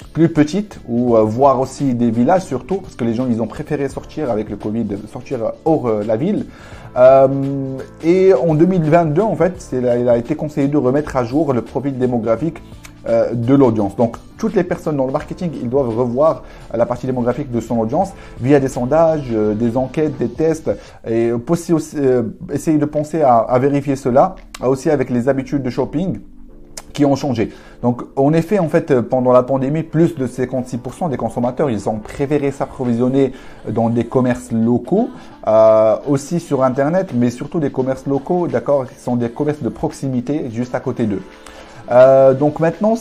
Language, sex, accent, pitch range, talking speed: French, male, French, 120-150 Hz, 185 wpm